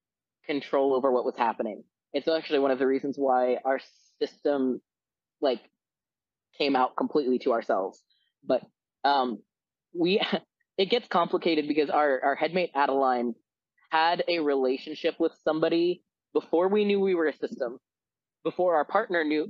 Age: 20-39